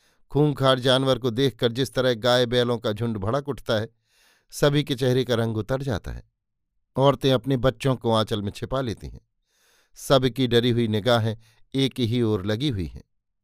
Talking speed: 180 wpm